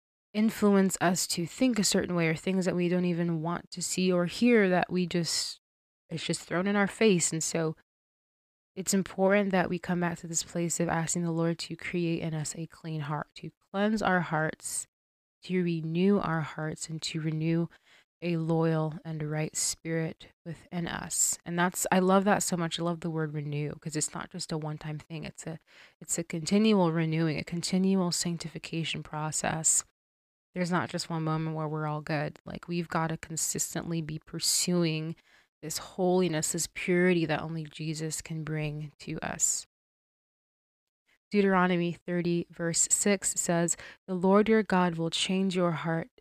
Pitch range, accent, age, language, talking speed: 160-180 Hz, American, 20-39, English, 175 wpm